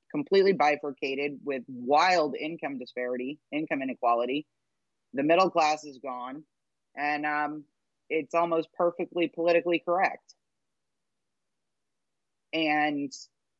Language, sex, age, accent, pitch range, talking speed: English, female, 30-49, American, 145-180 Hz, 95 wpm